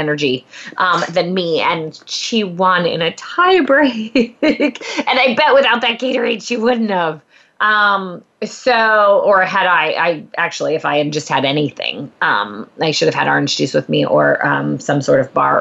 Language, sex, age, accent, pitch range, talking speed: English, female, 20-39, American, 165-245 Hz, 185 wpm